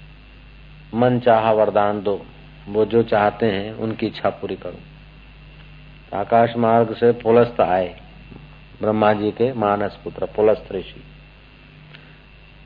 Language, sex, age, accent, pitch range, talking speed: Hindi, male, 50-69, native, 105-145 Hz, 115 wpm